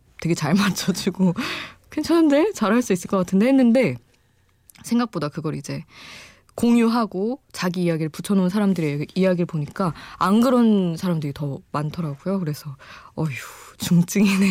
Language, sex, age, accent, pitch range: Korean, female, 20-39, native, 150-205 Hz